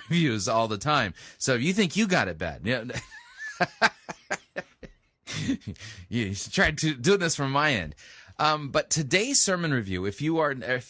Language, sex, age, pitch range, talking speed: English, male, 30-49, 100-140 Hz, 170 wpm